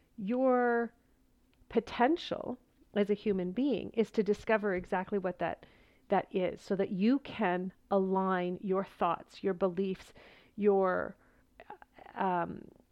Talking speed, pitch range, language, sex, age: 115 wpm, 190-230 Hz, English, female, 40-59